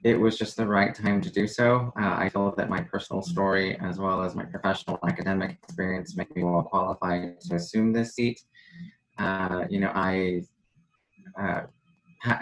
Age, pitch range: 20-39, 90-110 Hz